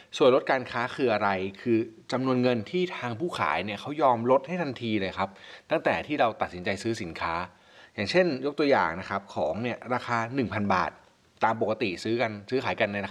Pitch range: 105-140 Hz